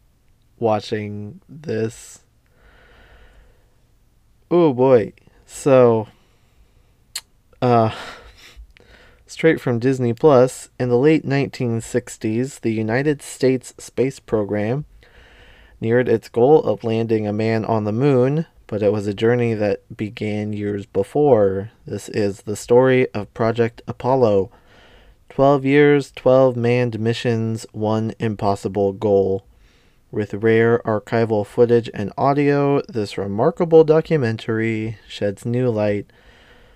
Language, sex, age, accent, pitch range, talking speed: English, male, 20-39, American, 105-130 Hz, 105 wpm